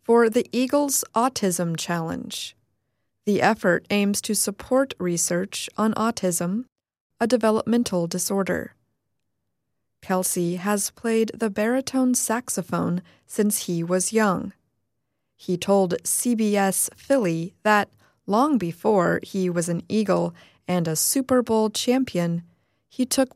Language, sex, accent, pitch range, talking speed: English, female, American, 175-230 Hz, 115 wpm